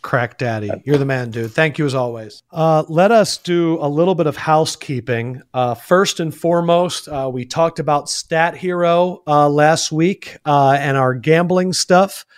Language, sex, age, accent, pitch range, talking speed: English, male, 40-59, American, 135-180 Hz, 180 wpm